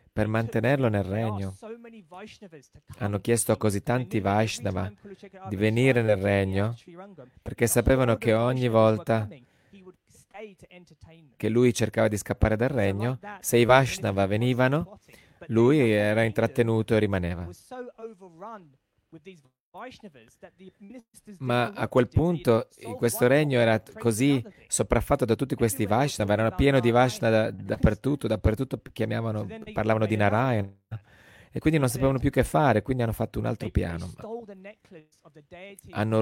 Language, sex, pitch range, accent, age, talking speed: Italian, male, 105-140 Hz, native, 40-59, 120 wpm